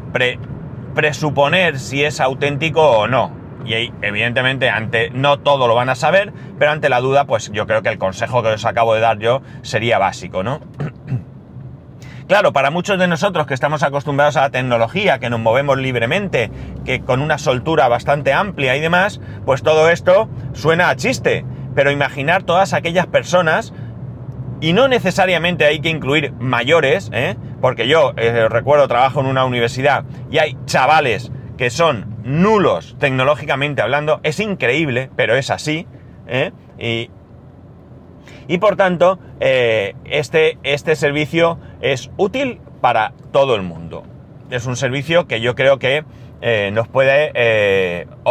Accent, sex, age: Spanish, male, 30-49